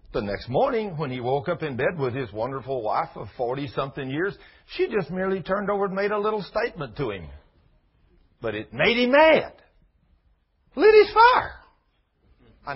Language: English